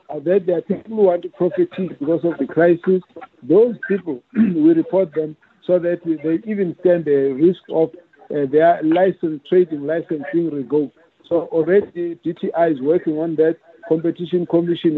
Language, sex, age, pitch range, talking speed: English, male, 60-79, 155-185 Hz, 160 wpm